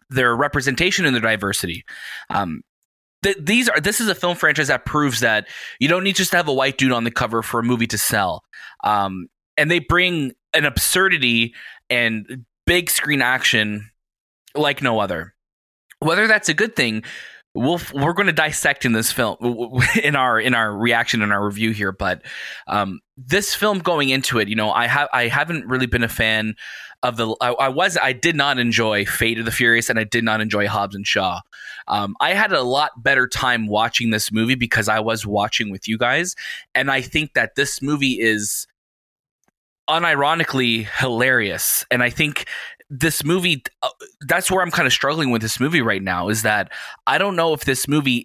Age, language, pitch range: 20-39, English, 115-150 Hz